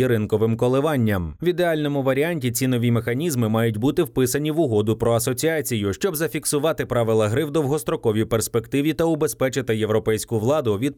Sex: male